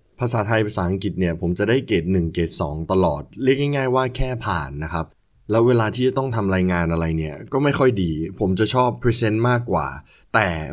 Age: 20-39